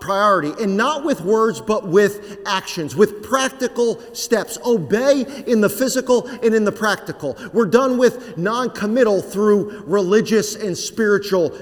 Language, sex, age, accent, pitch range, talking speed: English, male, 40-59, American, 210-275 Hz, 140 wpm